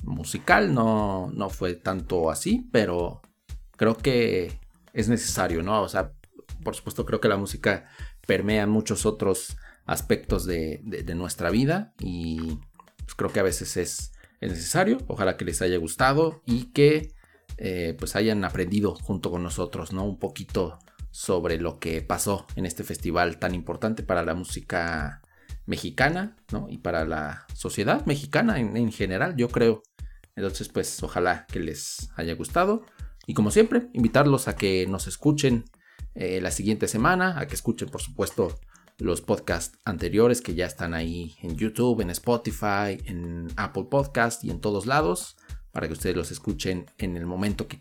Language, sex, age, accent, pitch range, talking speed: Spanish, male, 40-59, Mexican, 85-120 Hz, 160 wpm